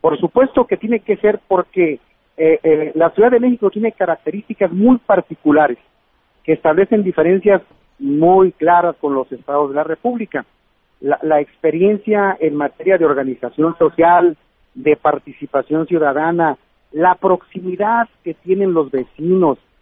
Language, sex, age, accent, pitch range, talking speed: Spanish, male, 50-69, Mexican, 150-190 Hz, 135 wpm